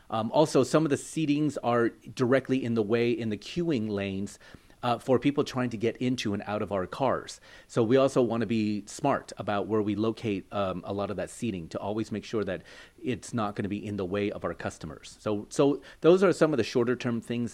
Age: 40-59